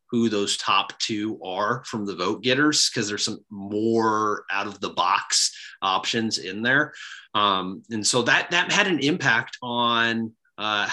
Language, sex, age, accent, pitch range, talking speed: English, male, 30-49, American, 100-125 Hz, 165 wpm